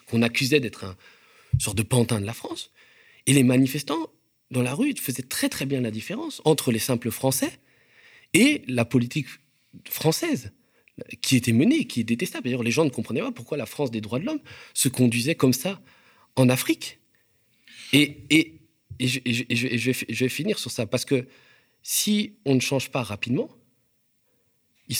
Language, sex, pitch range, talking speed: French, male, 105-135 Hz, 190 wpm